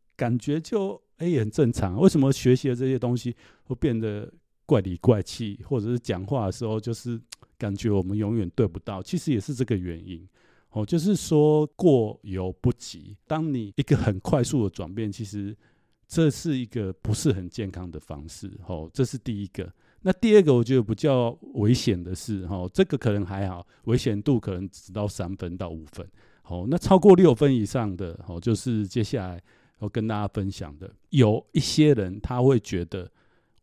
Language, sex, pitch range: Chinese, male, 95-130 Hz